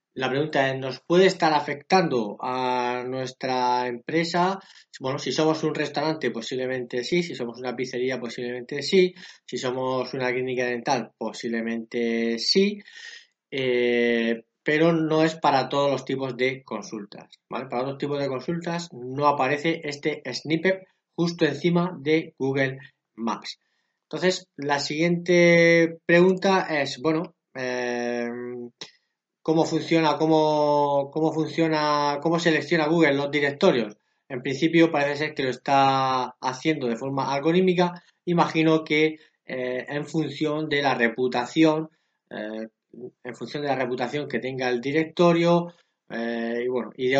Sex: male